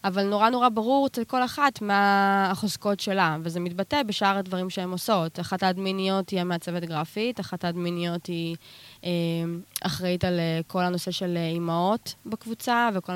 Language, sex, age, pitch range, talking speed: Hebrew, female, 20-39, 180-230 Hz, 145 wpm